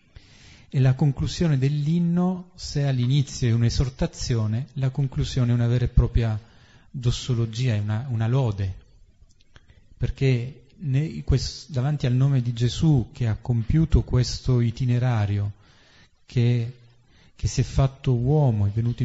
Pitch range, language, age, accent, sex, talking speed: 115-135 Hz, Italian, 40-59, native, male, 130 wpm